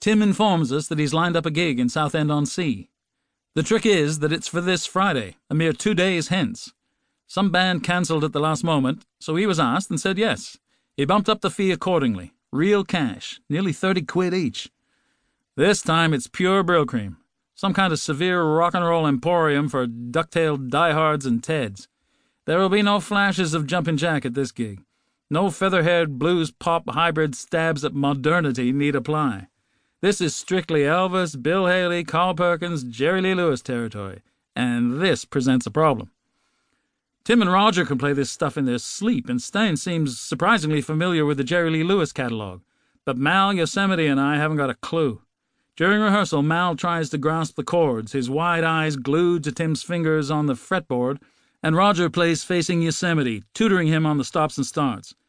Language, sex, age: English, male, 40-59